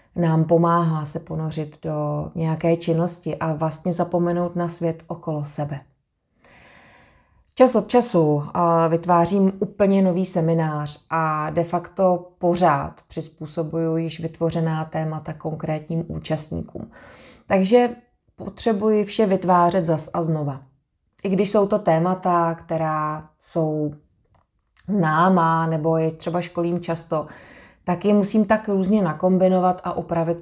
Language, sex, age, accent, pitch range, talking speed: Czech, female, 20-39, native, 155-180 Hz, 115 wpm